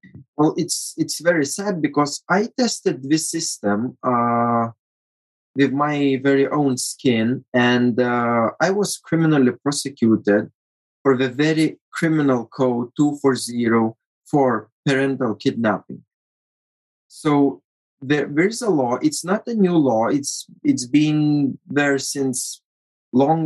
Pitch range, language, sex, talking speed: 120-145 Hz, English, male, 120 wpm